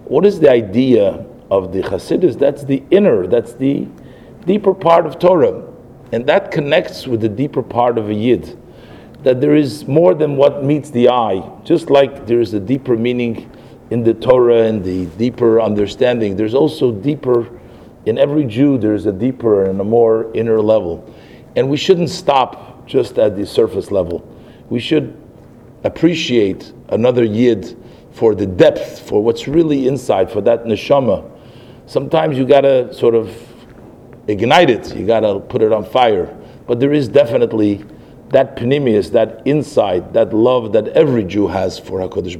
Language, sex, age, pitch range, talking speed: English, male, 50-69, 115-140 Hz, 165 wpm